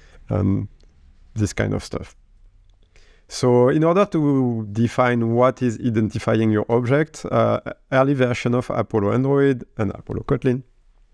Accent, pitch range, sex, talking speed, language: French, 105-130 Hz, male, 130 wpm, English